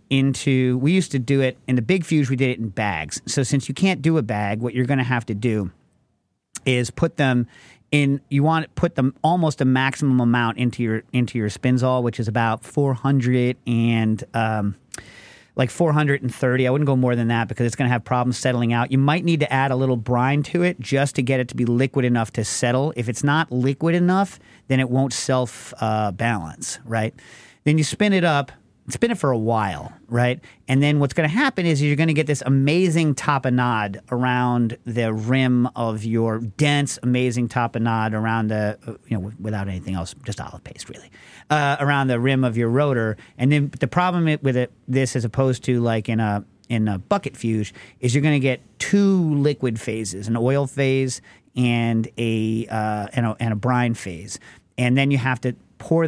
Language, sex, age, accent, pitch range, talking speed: English, male, 40-59, American, 115-140 Hz, 210 wpm